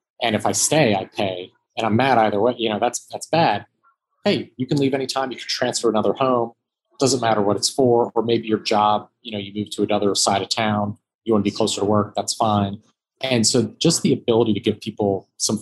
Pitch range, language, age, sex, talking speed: 100-115 Hz, English, 30-49, male, 240 wpm